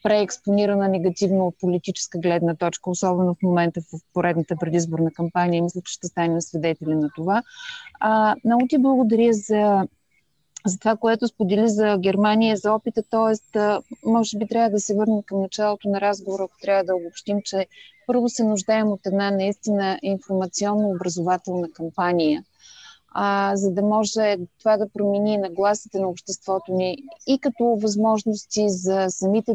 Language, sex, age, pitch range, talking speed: Bulgarian, female, 30-49, 175-220 Hz, 145 wpm